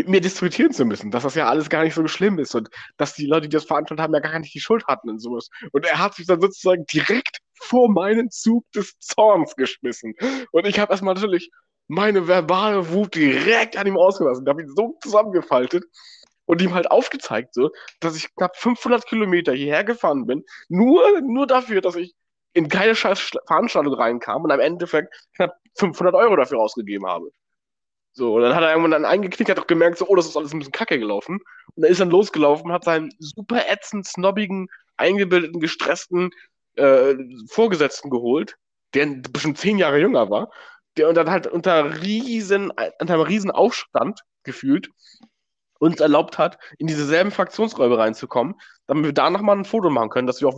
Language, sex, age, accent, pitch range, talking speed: German, male, 20-39, German, 150-210 Hz, 195 wpm